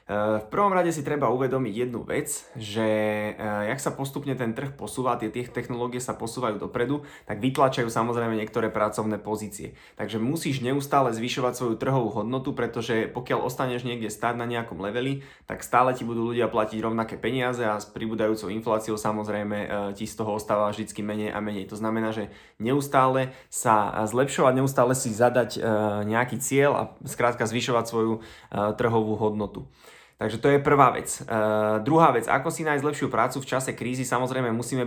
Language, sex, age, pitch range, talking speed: Slovak, male, 20-39, 110-130 Hz, 165 wpm